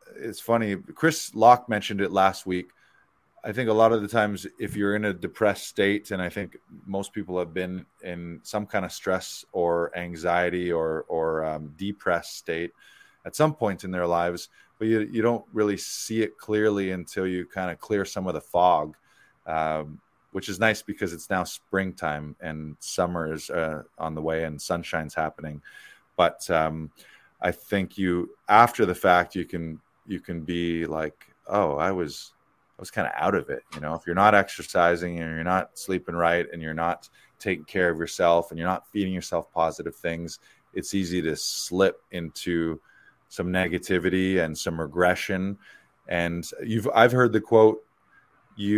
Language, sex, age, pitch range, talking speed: English, male, 20-39, 85-105 Hz, 180 wpm